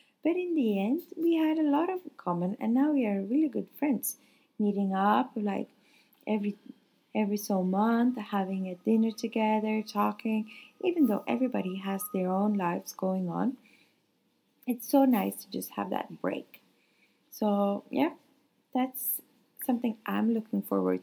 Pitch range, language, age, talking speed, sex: 195-250 Hz, English, 20-39, 150 wpm, female